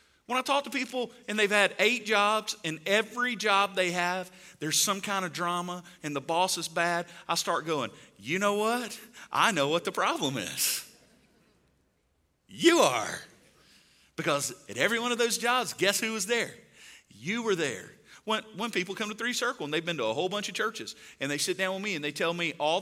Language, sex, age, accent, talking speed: English, male, 40-59, American, 210 wpm